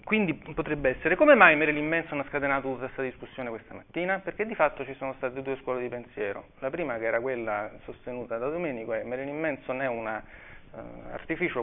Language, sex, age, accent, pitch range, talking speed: Italian, male, 30-49, native, 120-155 Hz, 200 wpm